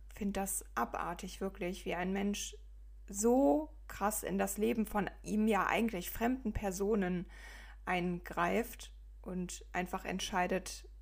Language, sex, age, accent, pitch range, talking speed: English, female, 20-39, German, 180-205 Hz, 125 wpm